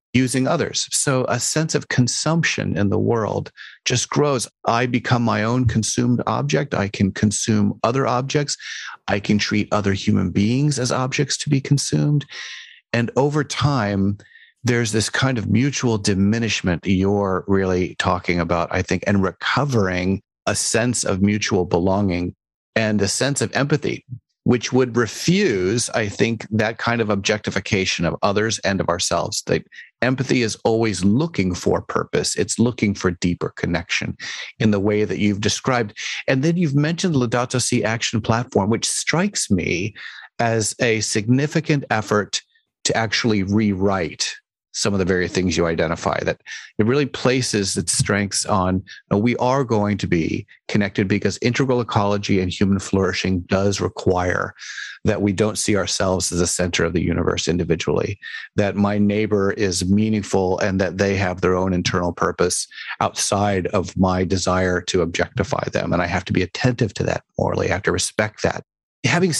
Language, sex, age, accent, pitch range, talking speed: English, male, 40-59, American, 95-125 Hz, 165 wpm